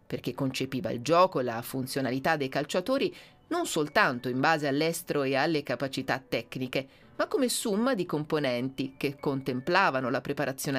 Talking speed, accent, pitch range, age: 150 wpm, native, 130-170 Hz, 30-49